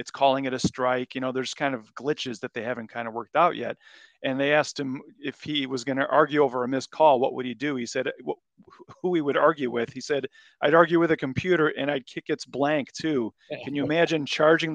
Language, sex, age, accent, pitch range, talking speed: English, male, 40-59, American, 130-185 Hz, 255 wpm